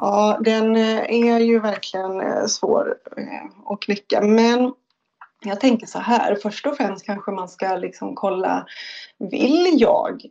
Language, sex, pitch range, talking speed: Swedish, female, 210-275 Hz, 130 wpm